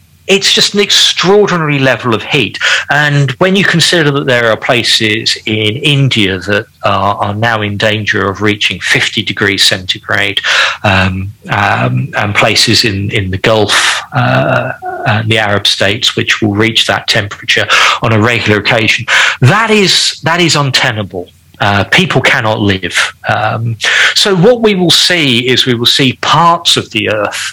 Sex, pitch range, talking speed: male, 105-140 Hz, 160 wpm